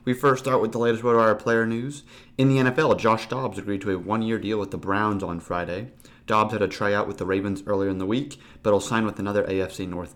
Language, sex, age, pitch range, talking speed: English, male, 30-49, 95-115 Hz, 260 wpm